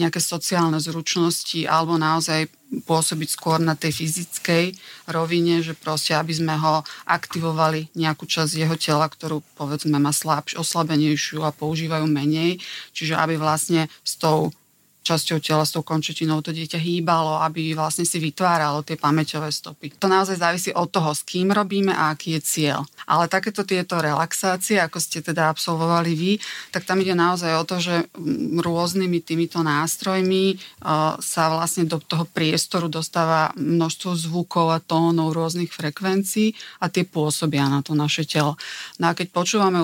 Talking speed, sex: 155 wpm, female